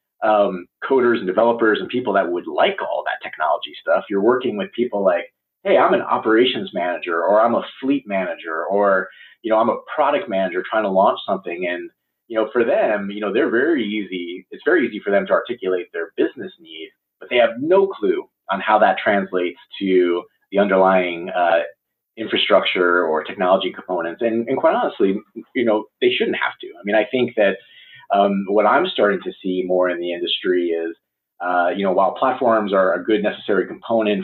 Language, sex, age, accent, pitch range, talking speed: English, male, 30-49, American, 90-135 Hz, 195 wpm